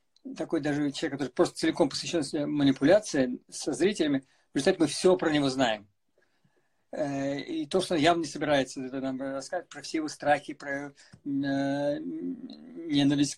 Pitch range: 145-195 Hz